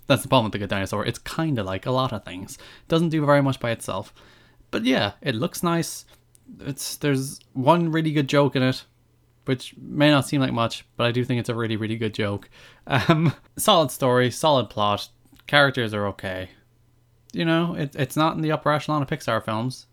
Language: English